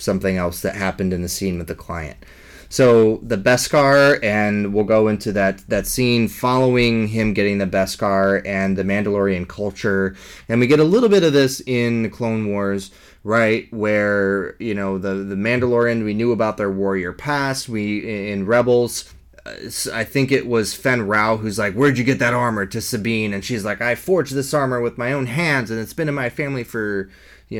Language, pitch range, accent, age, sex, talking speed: English, 100-120 Hz, American, 20-39, male, 195 wpm